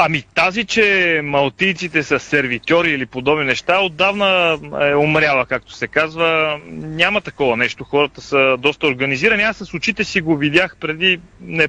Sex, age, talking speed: male, 30-49, 155 wpm